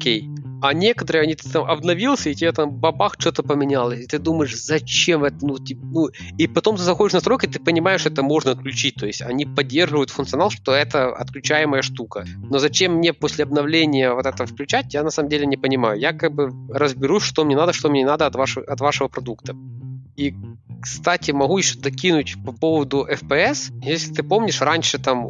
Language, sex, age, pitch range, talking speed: Ukrainian, male, 20-39, 130-155 Hz, 195 wpm